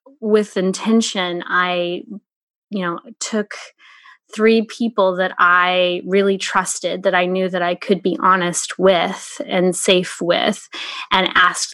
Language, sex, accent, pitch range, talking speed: English, female, American, 180-215 Hz, 135 wpm